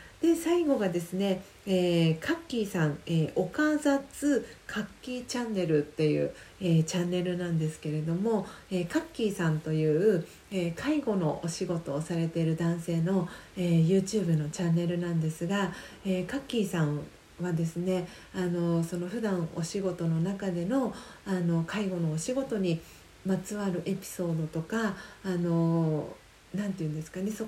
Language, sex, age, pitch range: Japanese, female, 40-59, 170-215 Hz